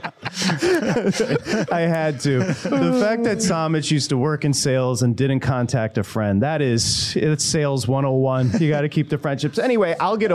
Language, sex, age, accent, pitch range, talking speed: English, male, 30-49, American, 140-210 Hz, 180 wpm